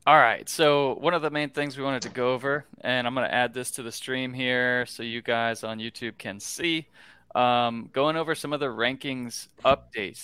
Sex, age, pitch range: male, 20-39, 110-130 Hz